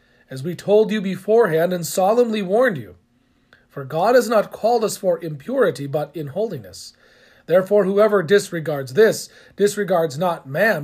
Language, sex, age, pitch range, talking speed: English, male, 40-59, 150-210 Hz, 150 wpm